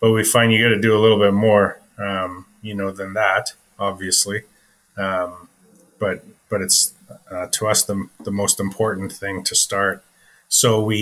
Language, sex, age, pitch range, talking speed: English, male, 30-49, 95-110 Hz, 175 wpm